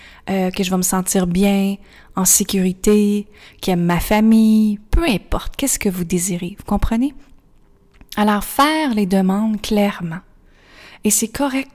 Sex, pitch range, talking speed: female, 180-220 Hz, 150 wpm